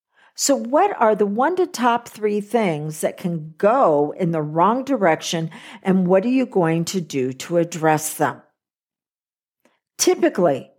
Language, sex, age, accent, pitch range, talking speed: English, female, 50-69, American, 160-235 Hz, 150 wpm